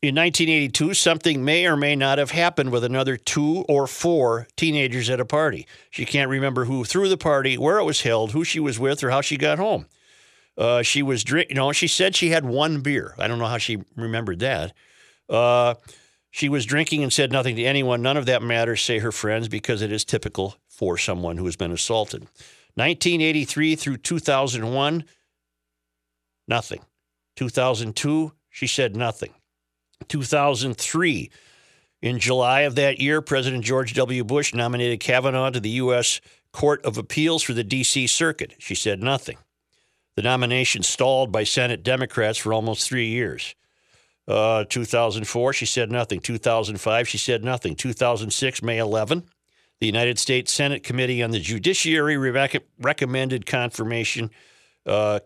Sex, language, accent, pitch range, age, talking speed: male, English, American, 115-145 Hz, 50-69, 160 wpm